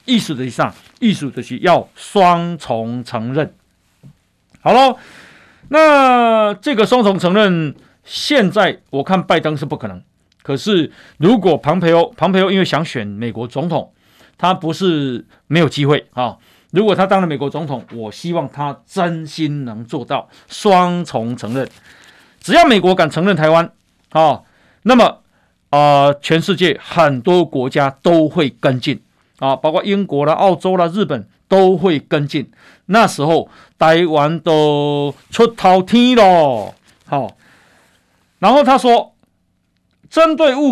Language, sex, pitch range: Chinese, male, 140-195 Hz